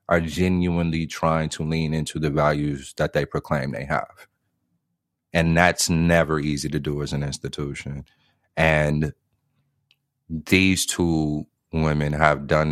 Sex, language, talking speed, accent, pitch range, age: male, English, 130 wpm, American, 70-80 Hz, 30-49